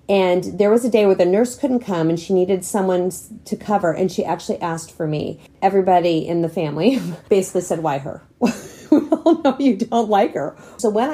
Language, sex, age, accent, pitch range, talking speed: English, female, 30-49, American, 175-225 Hz, 205 wpm